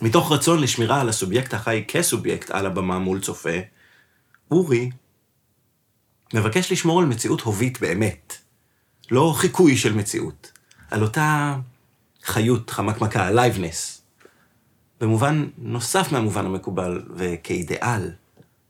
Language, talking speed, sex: Hebrew, 105 wpm, male